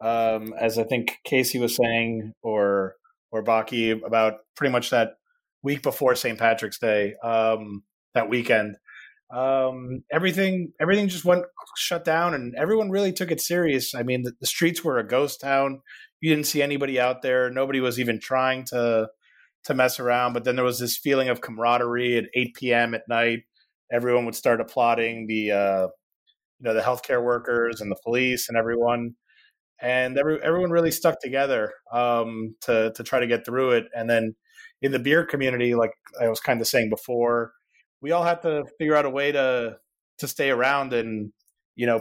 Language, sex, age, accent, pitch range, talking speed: English, male, 30-49, American, 115-140 Hz, 185 wpm